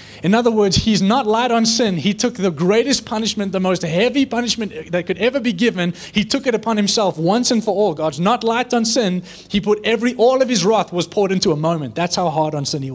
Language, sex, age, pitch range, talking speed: English, male, 20-39, 155-225 Hz, 250 wpm